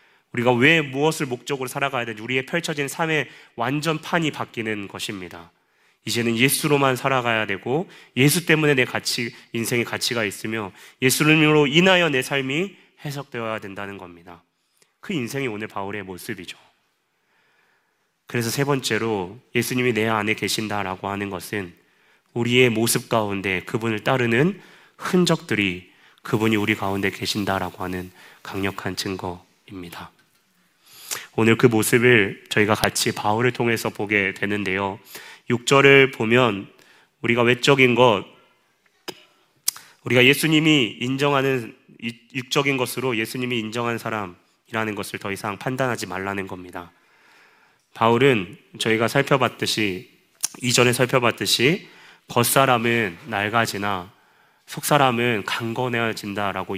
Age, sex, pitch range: 30-49, male, 100-130 Hz